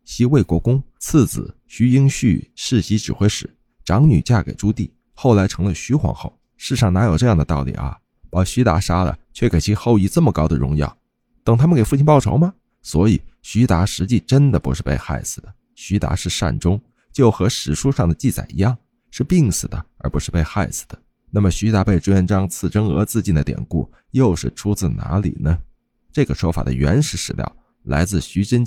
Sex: male